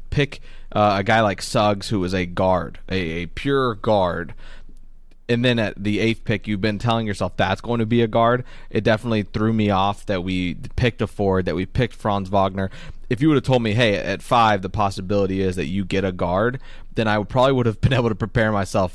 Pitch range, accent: 100-120 Hz, American